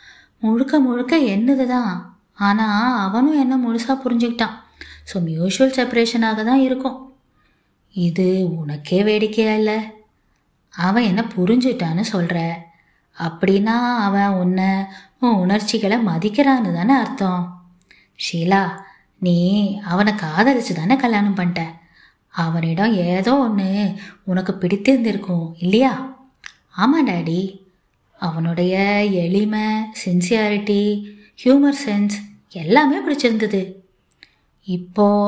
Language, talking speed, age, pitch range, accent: Tamil, 85 wpm, 20-39, 190-260 Hz, native